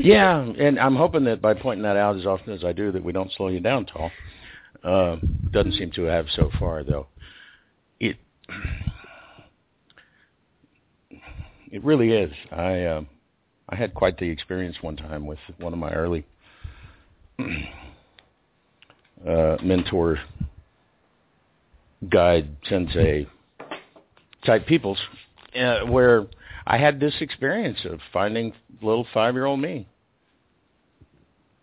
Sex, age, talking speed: male, 60-79, 120 wpm